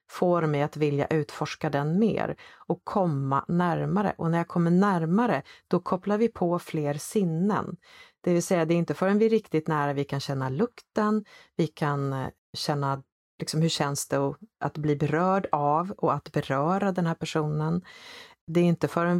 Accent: native